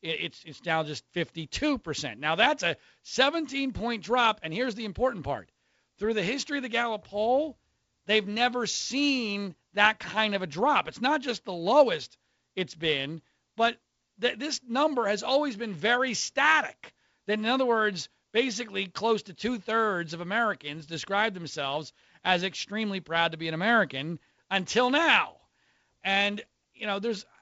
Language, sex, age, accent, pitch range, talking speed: English, male, 40-59, American, 145-225 Hz, 155 wpm